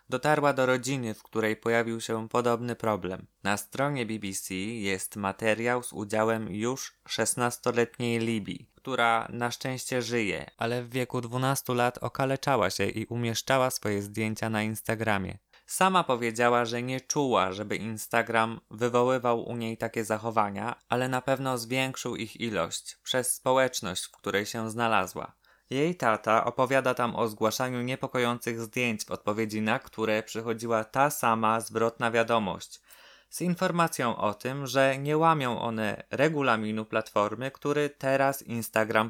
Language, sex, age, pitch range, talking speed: Polish, male, 20-39, 110-125 Hz, 140 wpm